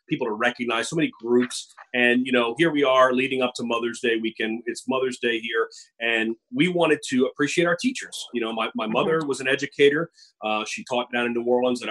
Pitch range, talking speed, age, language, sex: 115-140 Hz, 225 wpm, 30-49, English, male